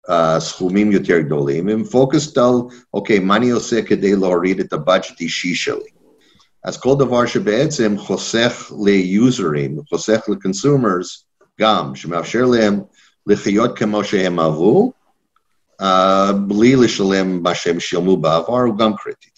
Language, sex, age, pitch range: Hebrew, male, 50-69, 90-115 Hz